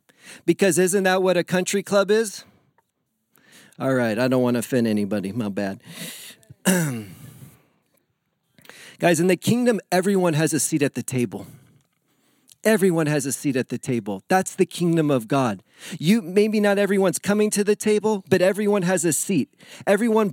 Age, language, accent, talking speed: 40-59, English, American, 160 wpm